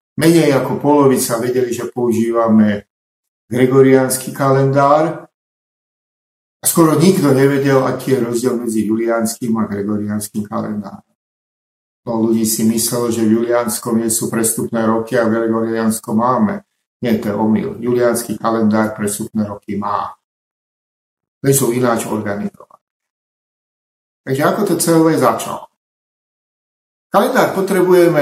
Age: 50-69